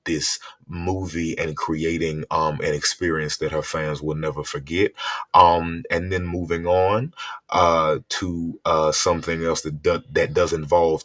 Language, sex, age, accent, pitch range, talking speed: English, male, 30-49, American, 80-95 Hz, 145 wpm